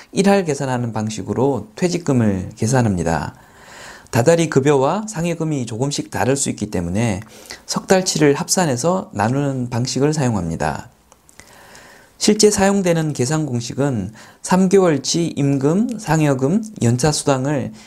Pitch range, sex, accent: 115-175 Hz, male, native